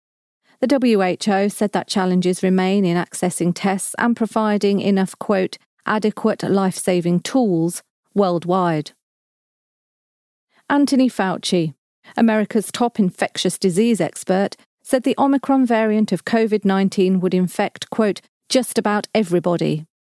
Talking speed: 110 wpm